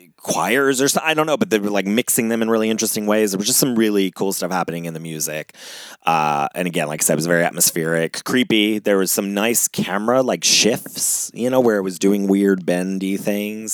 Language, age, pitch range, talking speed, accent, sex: English, 30-49, 80-100 Hz, 235 wpm, American, male